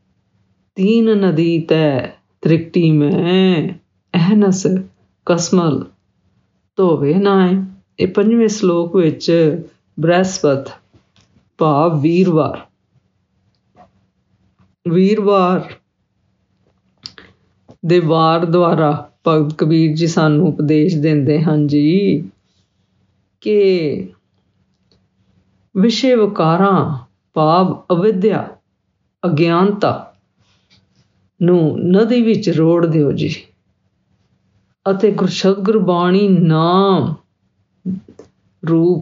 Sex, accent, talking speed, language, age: female, Indian, 70 wpm, English, 50-69